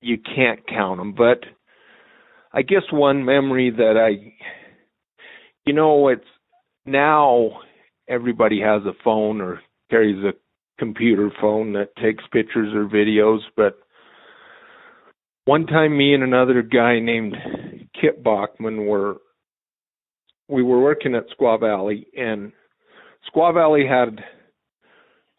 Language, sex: English, male